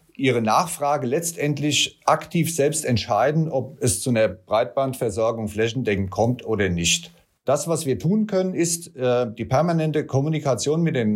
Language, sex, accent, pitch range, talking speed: German, male, German, 110-150 Hz, 130 wpm